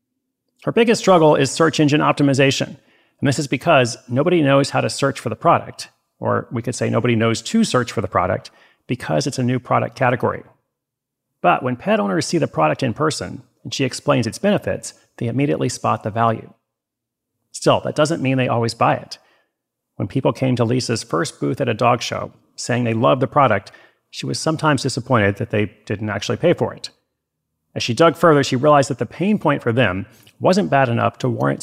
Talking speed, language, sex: 205 wpm, English, male